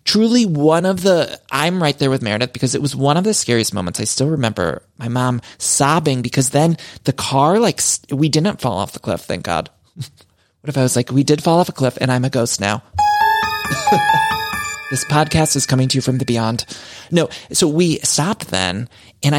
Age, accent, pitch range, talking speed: 30-49, American, 120-160 Hz, 205 wpm